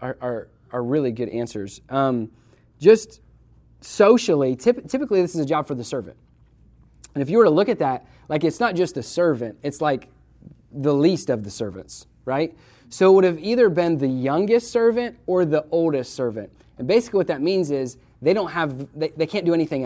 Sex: male